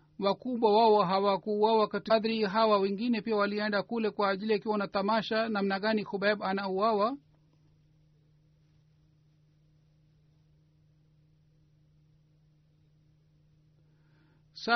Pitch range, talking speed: 150-210 Hz, 75 wpm